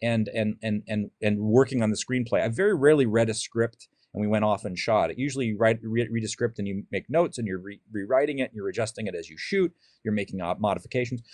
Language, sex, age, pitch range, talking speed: English, male, 40-59, 115-155 Hz, 250 wpm